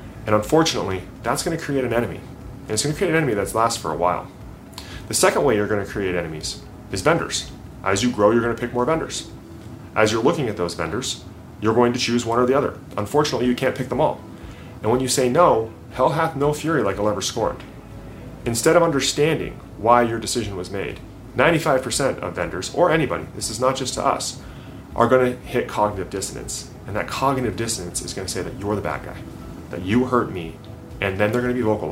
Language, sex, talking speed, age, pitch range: English, male, 230 wpm, 30-49, 95-130 Hz